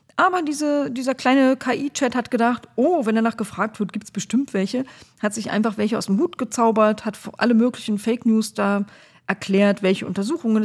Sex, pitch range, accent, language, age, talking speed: female, 200-255 Hz, German, German, 40-59, 180 wpm